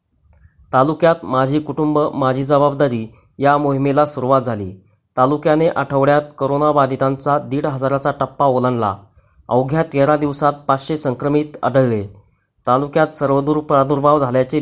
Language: Marathi